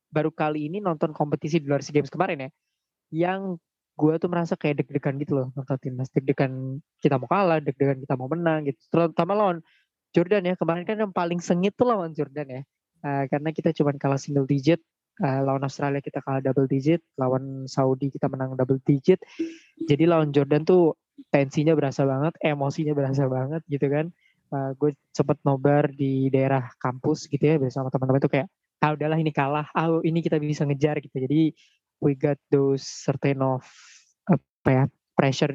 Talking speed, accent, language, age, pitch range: 180 wpm, native, Indonesian, 20-39, 140-160 Hz